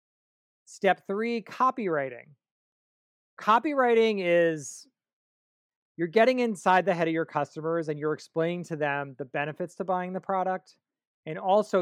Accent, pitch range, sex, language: American, 150-185 Hz, male, English